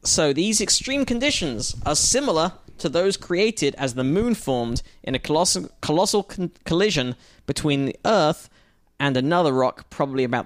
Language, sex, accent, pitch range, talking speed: English, male, British, 125-175 Hz, 150 wpm